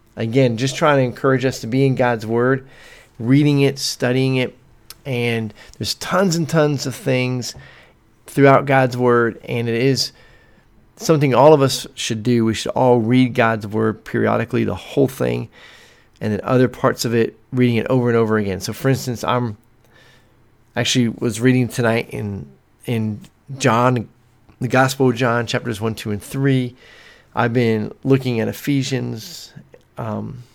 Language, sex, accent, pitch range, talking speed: English, male, American, 110-130 Hz, 160 wpm